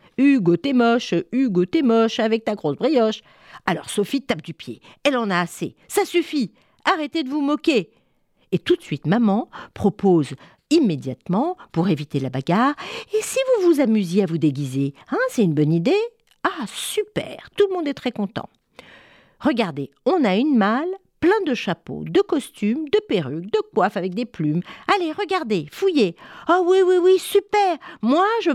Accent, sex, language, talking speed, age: French, female, French, 180 wpm, 50-69